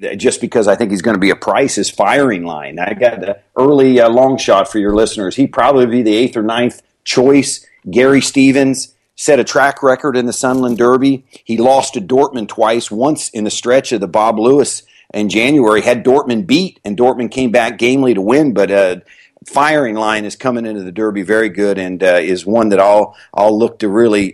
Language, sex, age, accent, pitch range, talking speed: English, male, 50-69, American, 105-130 Hz, 215 wpm